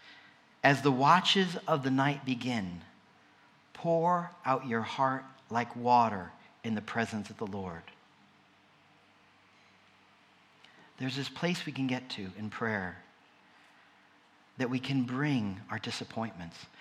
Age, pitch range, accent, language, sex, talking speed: 50-69, 120-190 Hz, American, English, male, 120 wpm